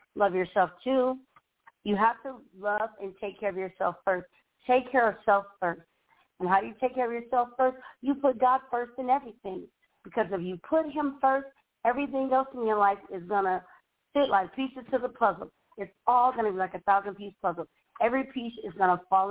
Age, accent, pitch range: 40-59, American, 195-260 Hz